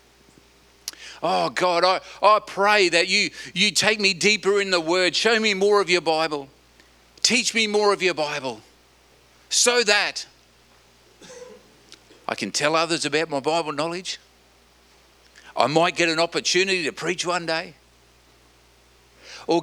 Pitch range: 135-190 Hz